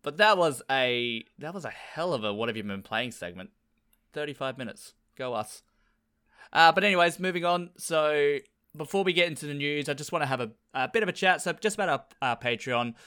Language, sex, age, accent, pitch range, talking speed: English, male, 20-39, Australian, 105-150 Hz, 230 wpm